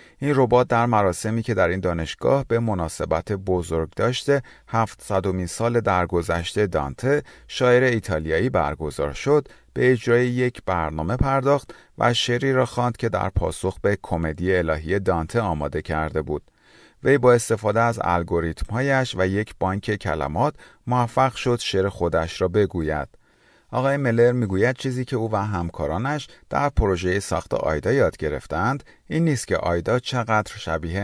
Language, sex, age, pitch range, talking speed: Persian, male, 30-49, 85-120 Hz, 145 wpm